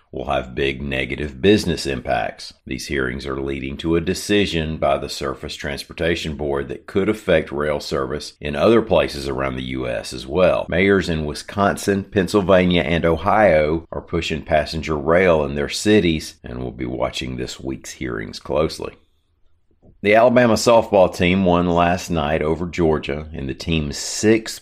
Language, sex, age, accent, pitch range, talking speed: English, male, 50-69, American, 70-90 Hz, 160 wpm